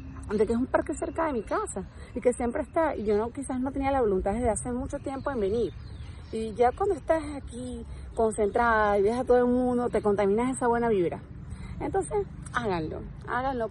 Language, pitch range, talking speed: Spanish, 200-270 Hz, 205 wpm